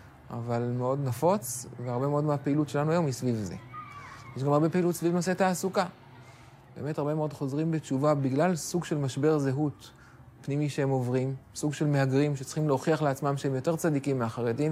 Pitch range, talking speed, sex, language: 130-175 Hz, 165 wpm, male, Hebrew